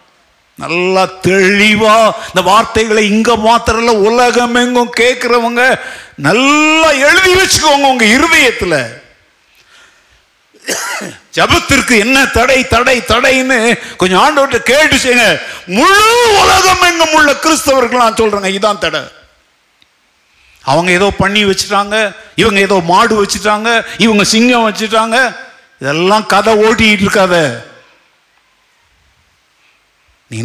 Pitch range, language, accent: 210-275 Hz, Tamil, native